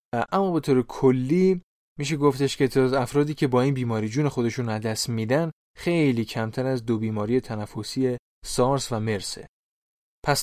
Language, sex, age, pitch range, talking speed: Persian, male, 20-39, 120-150 Hz, 160 wpm